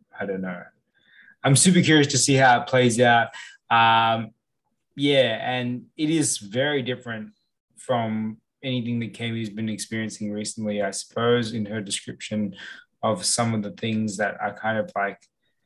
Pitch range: 105-125 Hz